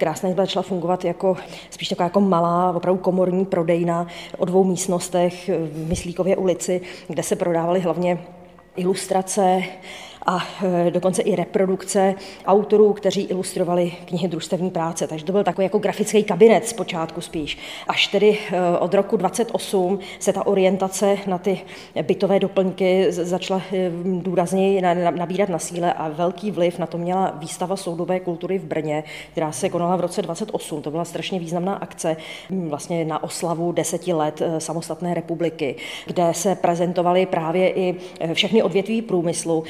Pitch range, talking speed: 170-190 Hz, 145 wpm